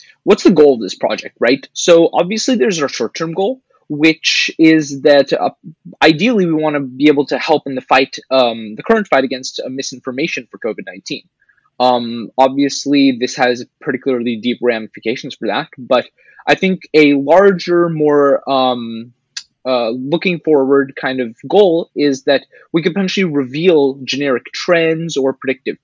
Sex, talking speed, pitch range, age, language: male, 165 wpm, 130-165 Hz, 20-39, English